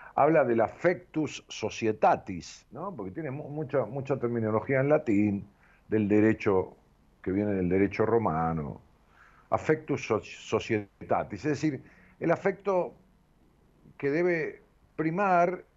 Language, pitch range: Spanish, 105-155 Hz